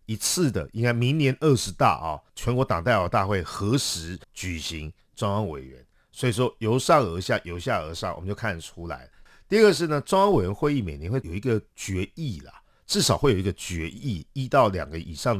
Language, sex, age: Chinese, male, 50-69